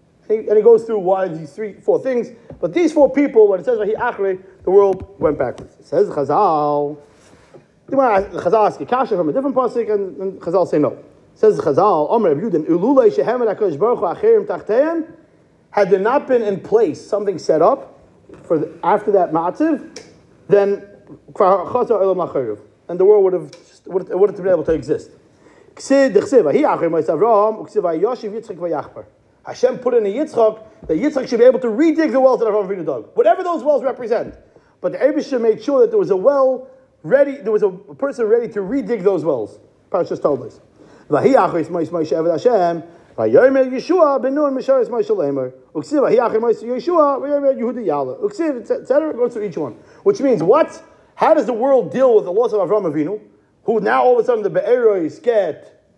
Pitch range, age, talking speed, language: 200-330 Hz, 40-59, 150 wpm, English